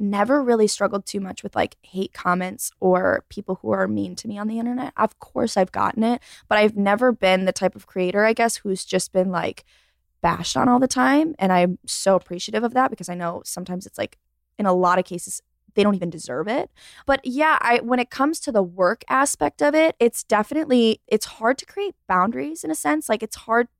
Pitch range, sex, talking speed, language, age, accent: 185-235 Hz, female, 225 wpm, English, 20-39, American